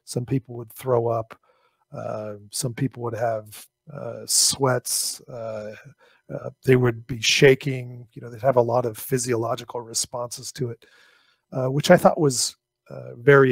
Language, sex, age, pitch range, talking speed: English, male, 40-59, 120-140 Hz, 160 wpm